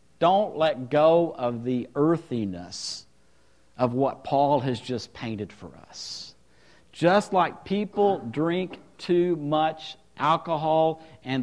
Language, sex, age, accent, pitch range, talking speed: English, male, 50-69, American, 120-175 Hz, 115 wpm